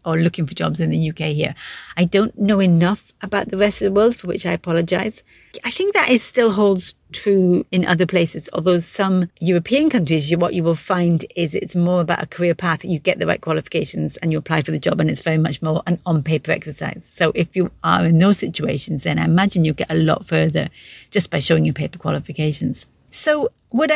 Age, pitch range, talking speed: 40-59, 165-210 Hz, 230 wpm